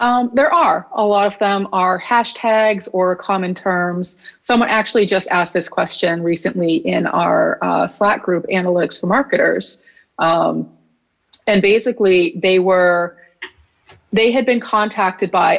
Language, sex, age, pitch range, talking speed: English, female, 30-49, 170-210 Hz, 140 wpm